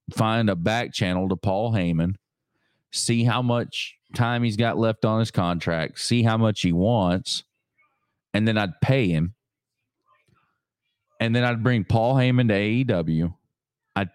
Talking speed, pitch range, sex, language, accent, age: 155 wpm, 90-120 Hz, male, English, American, 30-49